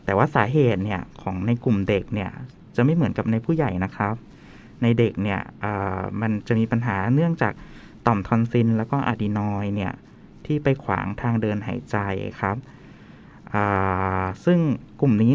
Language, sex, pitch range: Thai, male, 105-135 Hz